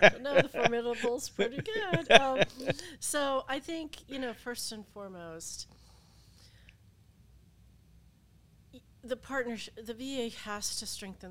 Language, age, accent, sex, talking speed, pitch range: English, 40-59, American, female, 120 wpm, 155-195 Hz